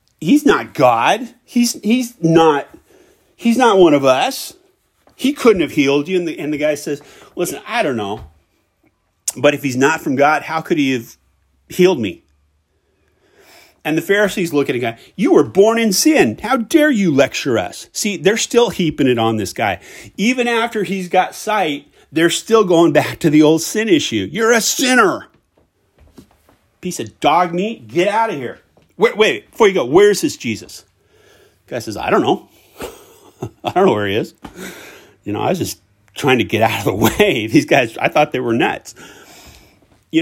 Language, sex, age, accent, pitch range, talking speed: English, male, 30-49, American, 135-225 Hz, 190 wpm